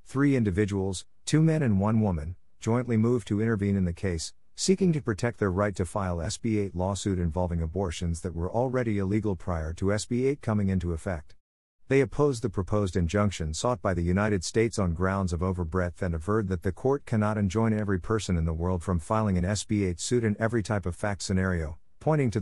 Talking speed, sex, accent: 205 wpm, male, American